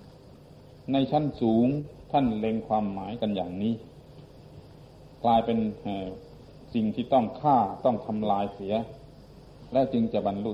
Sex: male